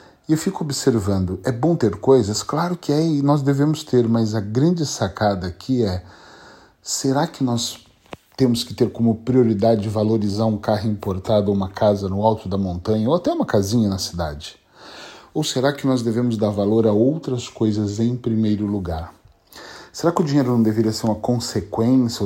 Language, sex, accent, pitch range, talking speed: Portuguese, male, Brazilian, 100-130 Hz, 185 wpm